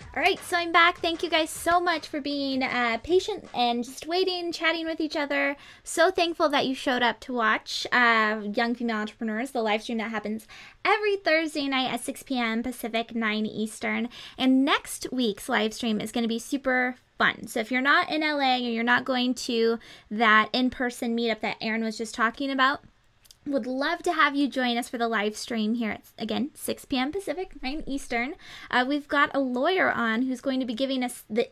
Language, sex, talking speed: English, female, 210 wpm